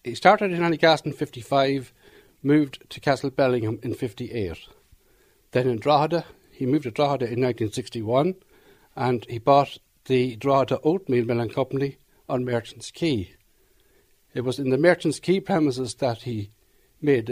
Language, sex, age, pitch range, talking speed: English, male, 60-79, 125-155 Hz, 150 wpm